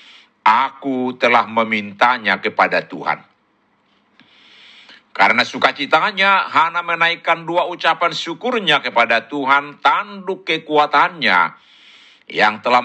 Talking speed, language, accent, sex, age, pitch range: 85 wpm, Indonesian, native, male, 60-79, 125-165 Hz